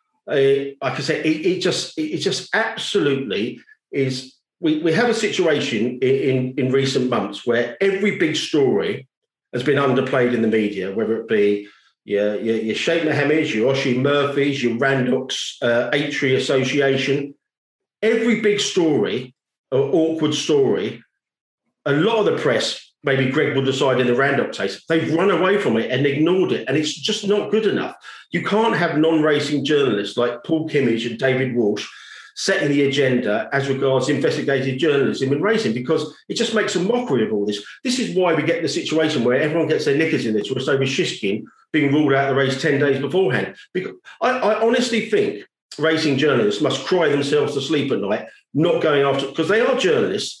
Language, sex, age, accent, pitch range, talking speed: English, male, 40-59, British, 135-185 Hz, 180 wpm